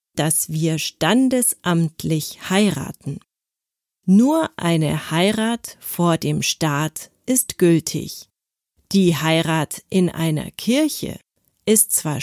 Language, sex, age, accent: German, female, 40-59, German